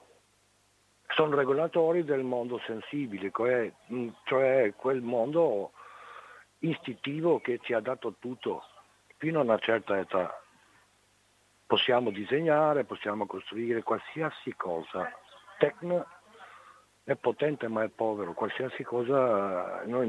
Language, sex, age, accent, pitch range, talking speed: Italian, male, 60-79, native, 105-135 Hz, 100 wpm